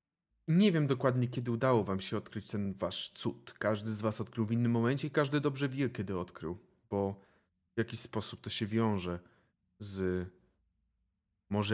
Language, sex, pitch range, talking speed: Polish, male, 95-130 Hz, 170 wpm